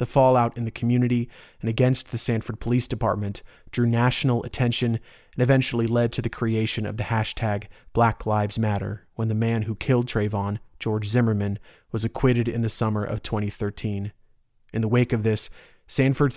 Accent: American